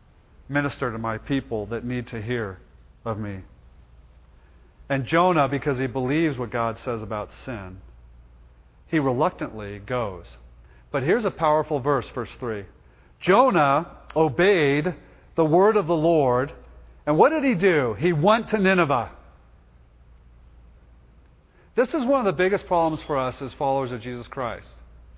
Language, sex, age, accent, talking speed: English, male, 40-59, American, 145 wpm